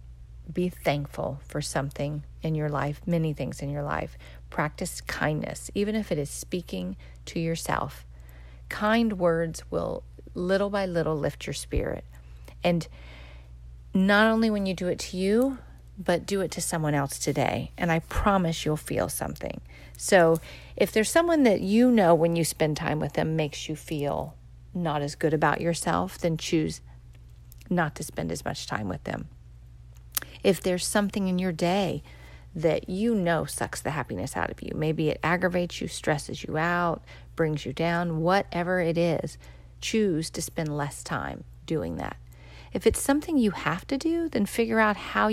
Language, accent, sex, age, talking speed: English, American, female, 40-59, 170 wpm